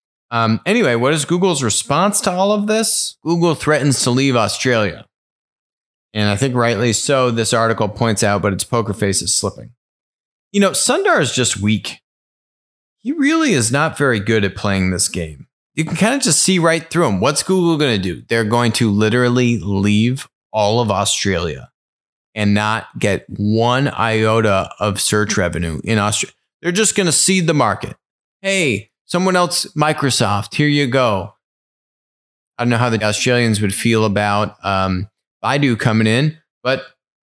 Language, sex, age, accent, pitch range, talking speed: English, male, 30-49, American, 105-145 Hz, 170 wpm